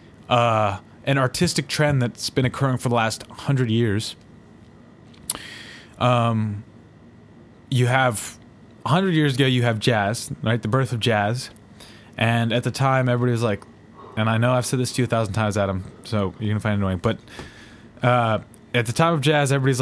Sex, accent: male, American